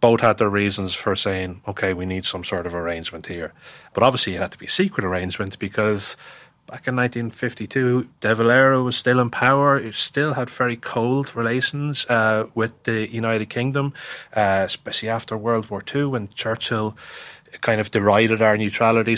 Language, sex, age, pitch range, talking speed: English, male, 30-49, 100-125 Hz, 180 wpm